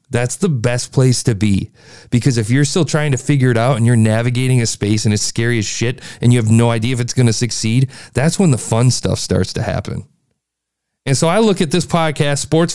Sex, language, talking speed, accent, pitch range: male, English, 240 wpm, American, 110-145 Hz